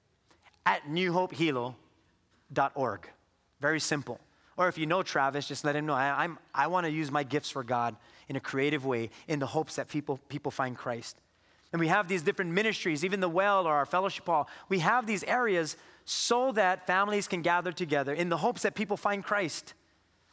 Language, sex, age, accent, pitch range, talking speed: English, male, 30-49, American, 155-200 Hz, 190 wpm